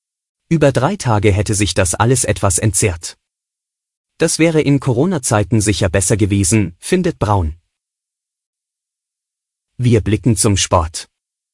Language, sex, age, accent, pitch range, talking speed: German, male, 30-49, German, 100-120 Hz, 115 wpm